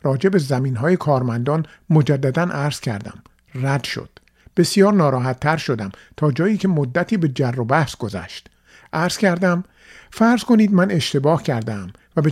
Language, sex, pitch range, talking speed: Persian, male, 130-175 Hz, 145 wpm